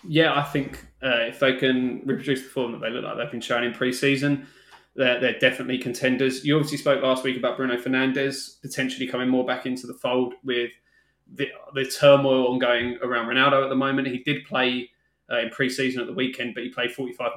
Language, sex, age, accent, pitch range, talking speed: English, male, 20-39, British, 120-135 Hz, 220 wpm